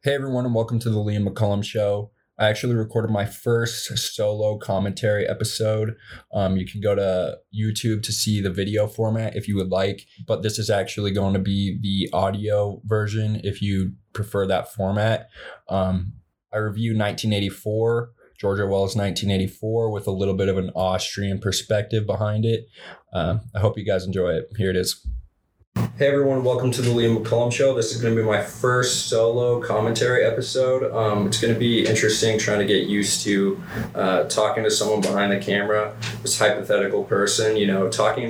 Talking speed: 180 wpm